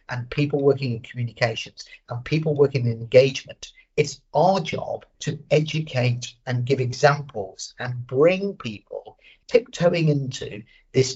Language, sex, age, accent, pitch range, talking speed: English, male, 50-69, British, 125-155 Hz, 130 wpm